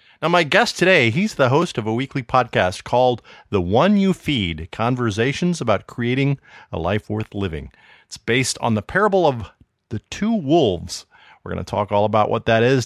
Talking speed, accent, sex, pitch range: 190 wpm, American, male, 105-150 Hz